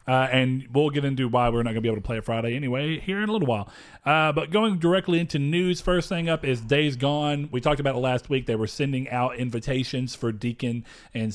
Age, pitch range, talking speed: 30-49, 120-150 Hz, 250 wpm